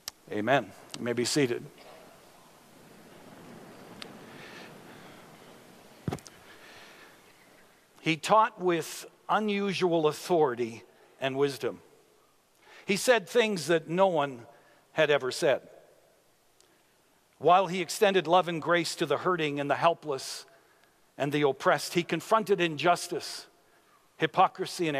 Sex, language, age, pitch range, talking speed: male, English, 60-79, 150-190 Hz, 100 wpm